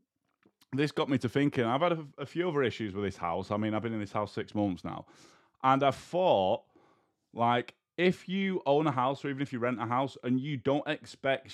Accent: British